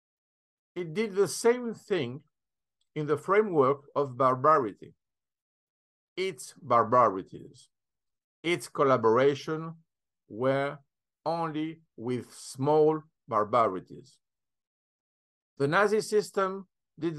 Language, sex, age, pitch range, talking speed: English, male, 50-69, 130-170 Hz, 80 wpm